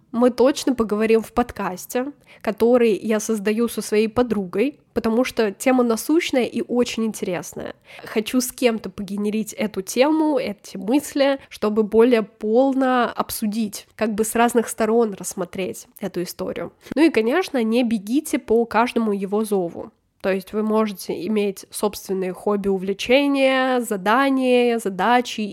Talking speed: 135 wpm